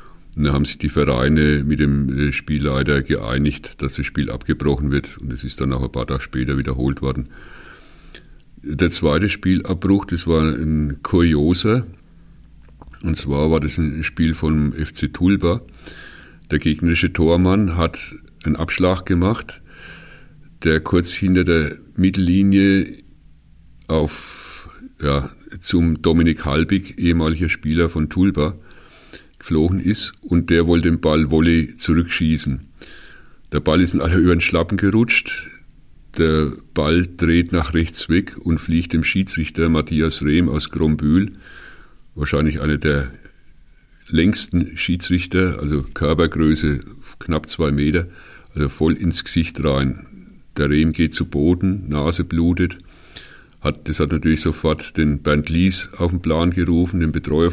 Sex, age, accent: male, 50-69, German